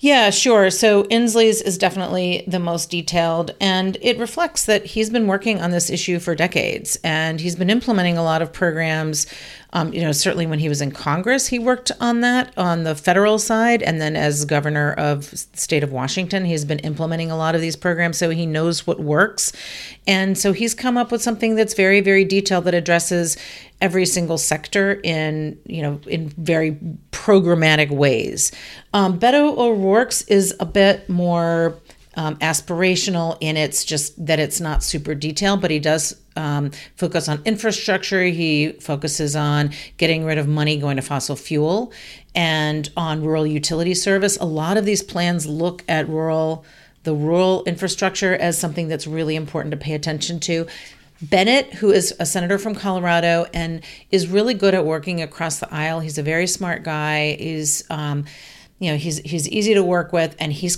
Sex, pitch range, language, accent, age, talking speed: female, 155-195 Hz, English, American, 40-59, 185 wpm